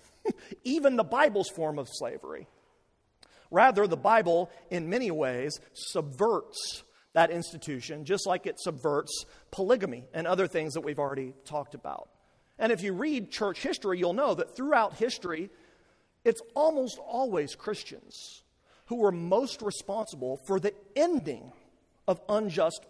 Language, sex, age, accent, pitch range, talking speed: English, male, 40-59, American, 160-240 Hz, 135 wpm